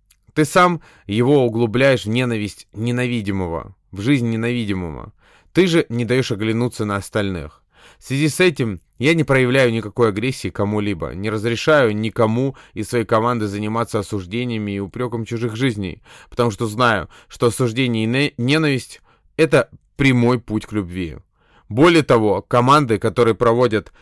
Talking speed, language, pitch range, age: 140 wpm, Russian, 100-125 Hz, 20-39